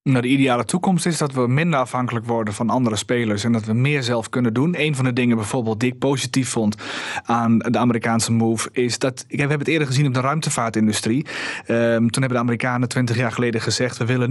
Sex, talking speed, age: male, 225 wpm, 30-49